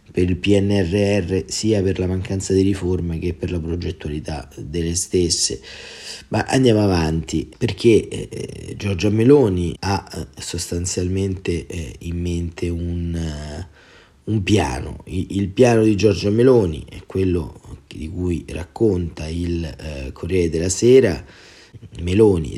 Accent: native